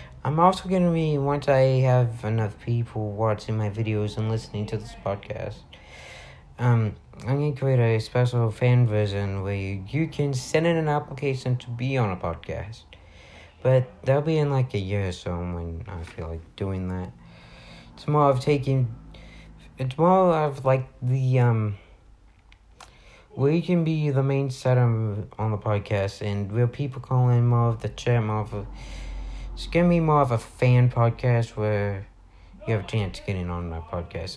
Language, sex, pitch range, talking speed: English, male, 100-130 Hz, 180 wpm